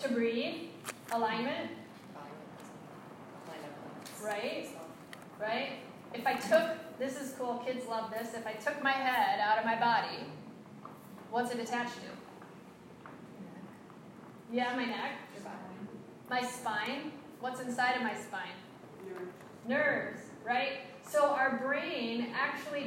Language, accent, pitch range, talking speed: English, American, 225-265 Hz, 115 wpm